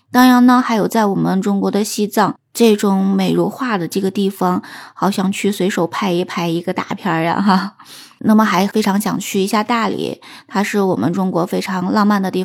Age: 20-39